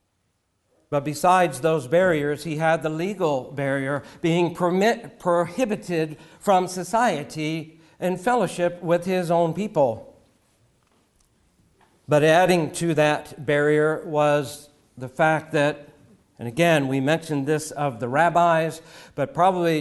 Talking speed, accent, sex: 120 wpm, American, male